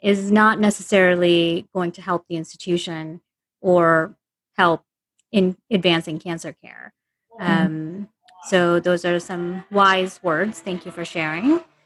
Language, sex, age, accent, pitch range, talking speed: English, female, 30-49, American, 175-210 Hz, 125 wpm